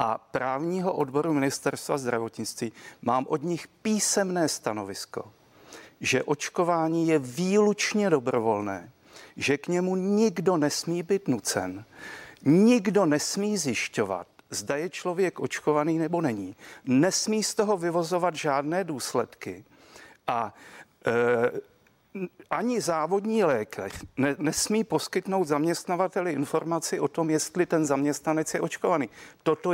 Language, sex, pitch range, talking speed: Czech, male, 145-190 Hz, 110 wpm